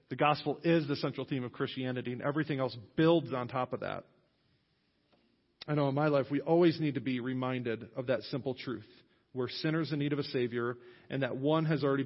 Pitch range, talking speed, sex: 125-150 Hz, 215 wpm, male